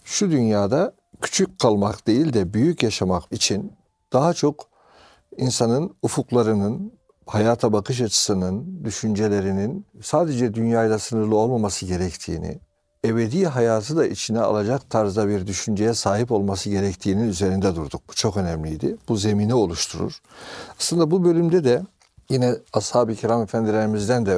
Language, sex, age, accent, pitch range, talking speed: Turkish, male, 60-79, native, 100-145 Hz, 125 wpm